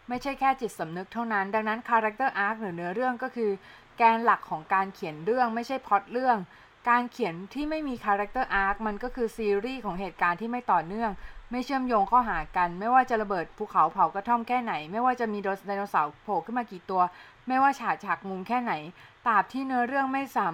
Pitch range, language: 195-250 Hz, Thai